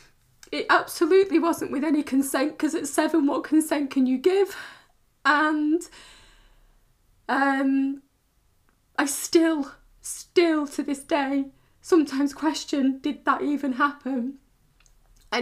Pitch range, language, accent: 255-325 Hz, English, British